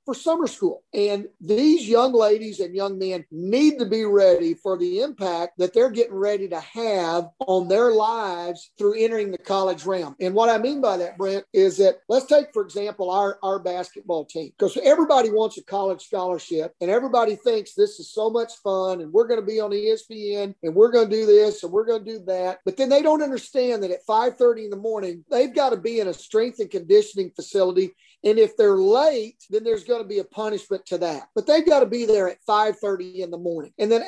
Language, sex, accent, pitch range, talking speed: English, male, American, 190-255 Hz, 225 wpm